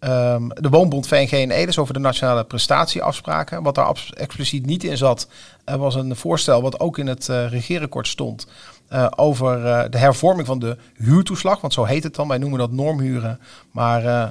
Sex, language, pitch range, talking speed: male, Dutch, 120-145 Hz, 185 wpm